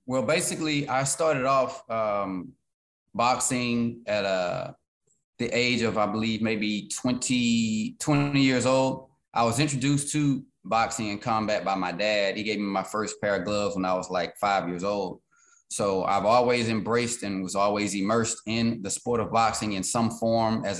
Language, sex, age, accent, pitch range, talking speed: English, male, 20-39, American, 100-125 Hz, 175 wpm